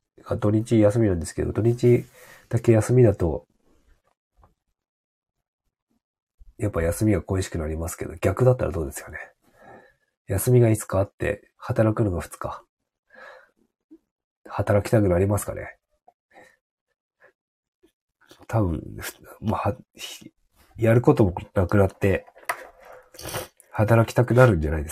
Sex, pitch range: male, 90-115 Hz